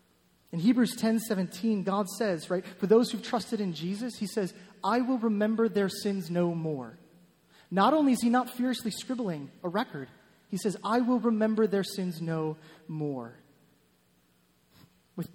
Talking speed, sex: 165 wpm, male